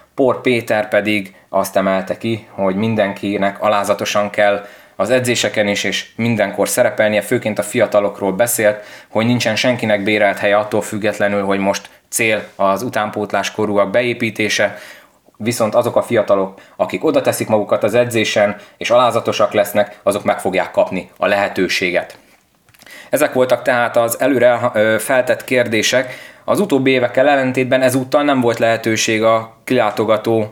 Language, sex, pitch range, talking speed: Hungarian, male, 105-125 Hz, 135 wpm